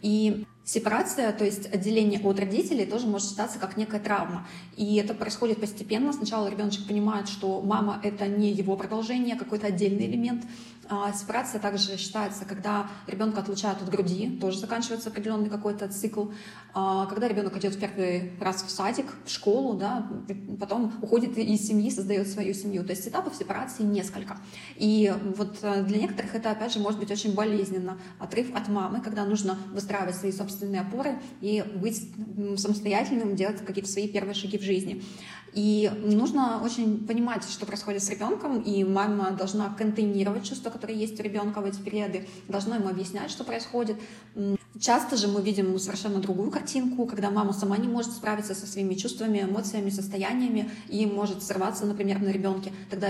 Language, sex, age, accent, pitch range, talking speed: Russian, female, 20-39, native, 195-215 Hz, 165 wpm